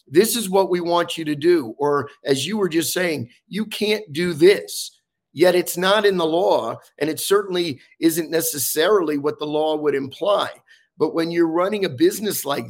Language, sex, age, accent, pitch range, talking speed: English, male, 50-69, American, 145-185 Hz, 195 wpm